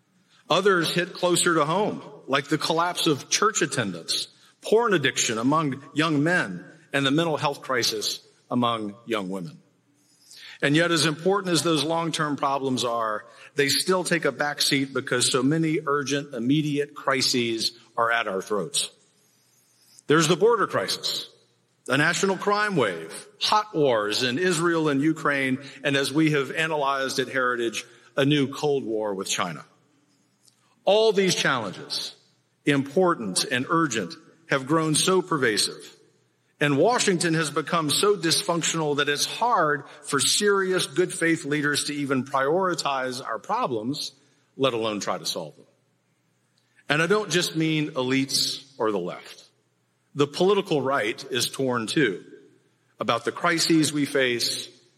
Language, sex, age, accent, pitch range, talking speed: English, male, 50-69, American, 135-165 Hz, 140 wpm